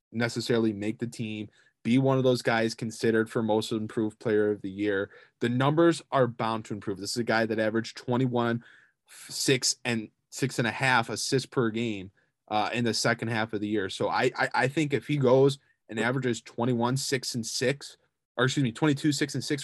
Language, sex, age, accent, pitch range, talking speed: English, male, 20-39, American, 110-130 Hz, 210 wpm